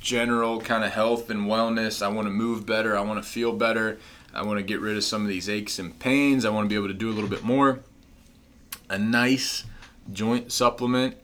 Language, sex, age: English, male, 20-39